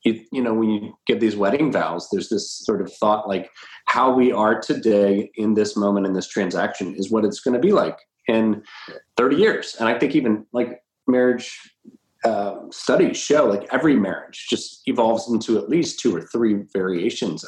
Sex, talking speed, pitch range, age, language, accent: male, 190 wpm, 100-115 Hz, 30-49, English, American